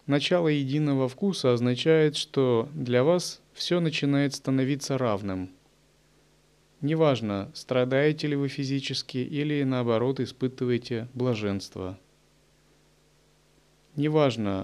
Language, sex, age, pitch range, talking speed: Russian, male, 30-49, 100-135 Hz, 85 wpm